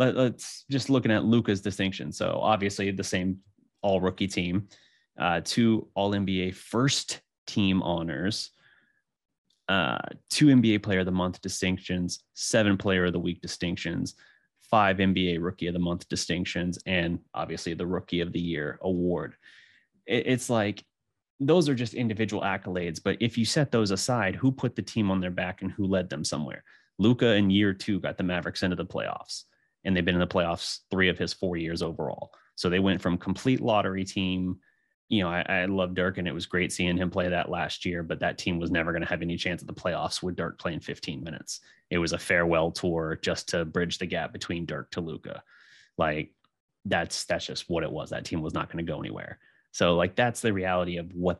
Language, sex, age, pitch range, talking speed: English, male, 30-49, 90-105 Hz, 200 wpm